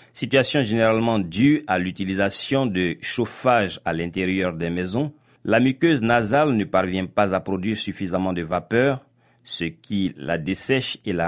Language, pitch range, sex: French, 95-125 Hz, male